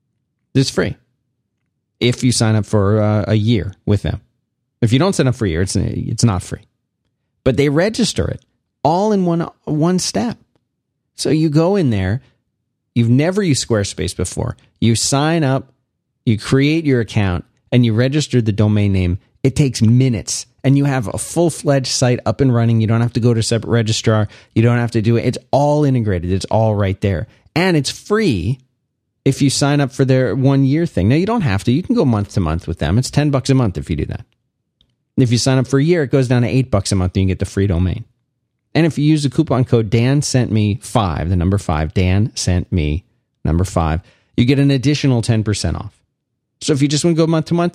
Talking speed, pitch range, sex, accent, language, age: 225 wpm, 105-135 Hz, male, American, English, 30-49